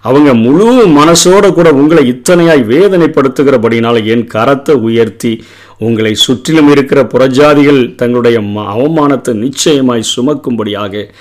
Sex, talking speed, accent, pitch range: male, 95 wpm, native, 120-160 Hz